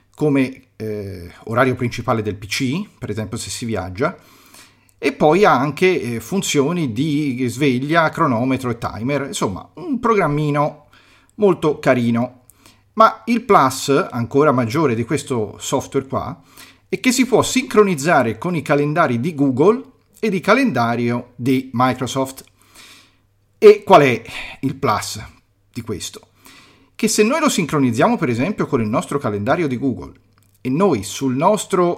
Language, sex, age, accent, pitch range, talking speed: Italian, male, 40-59, native, 115-150 Hz, 140 wpm